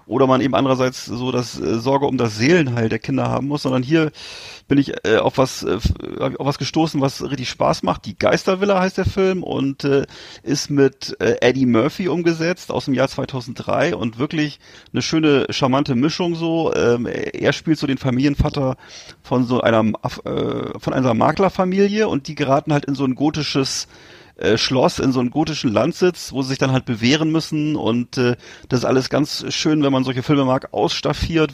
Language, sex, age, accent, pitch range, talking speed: German, male, 40-59, German, 130-155 Hz, 180 wpm